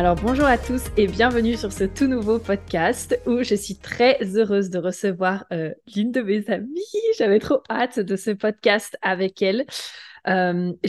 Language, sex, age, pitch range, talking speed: French, female, 20-39, 185-225 Hz, 175 wpm